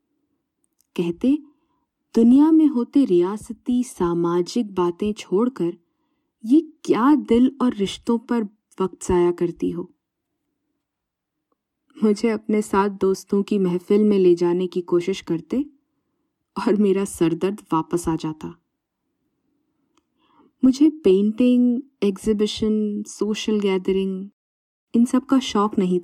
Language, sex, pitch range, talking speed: Hindi, female, 185-250 Hz, 105 wpm